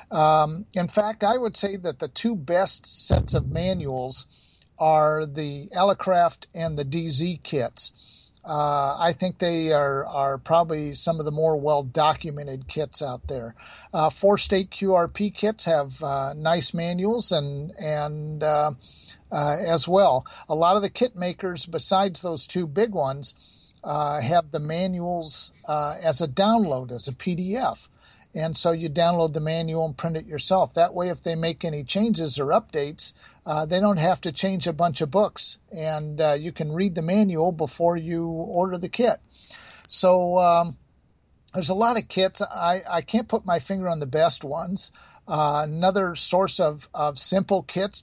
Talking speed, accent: 170 wpm, American